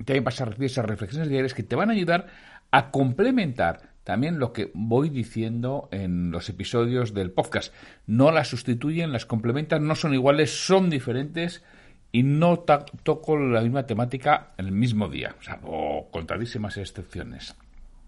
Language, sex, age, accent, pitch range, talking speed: Spanish, male, 60-79, Spanish, 110-170 Hz, 165 wpm